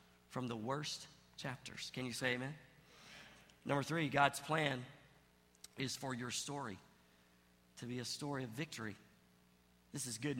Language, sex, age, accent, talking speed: English, male, 50-69, American, 145 wpm